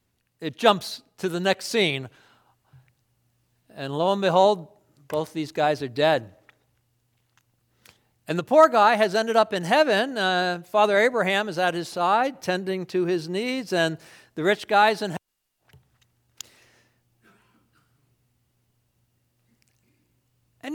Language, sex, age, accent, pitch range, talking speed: English, male, 60-79, American, 120-200 Hz, 120 wpm